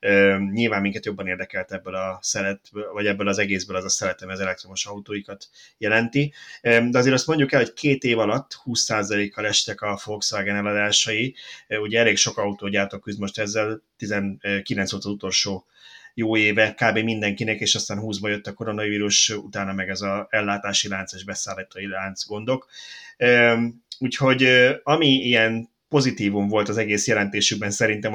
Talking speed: 150 wpm